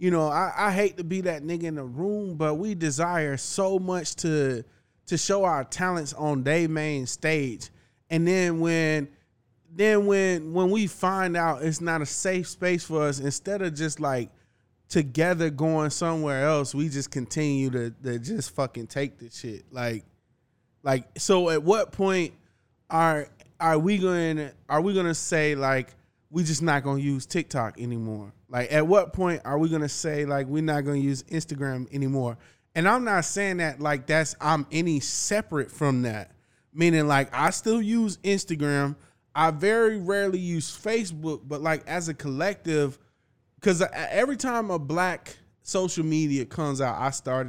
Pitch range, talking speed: 130-175 Hz, 170 wpm